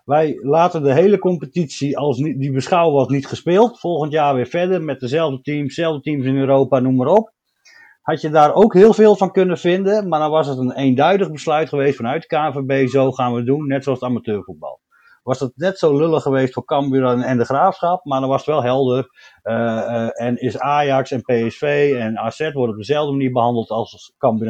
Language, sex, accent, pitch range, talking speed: Dutch, male, Dutch, 130-175 Hz, 210 wpm